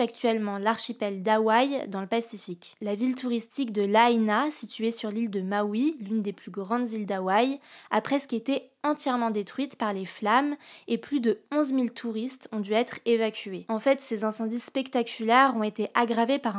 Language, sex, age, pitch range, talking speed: French, female, 20-39, 215-250 Hz, 175 wpm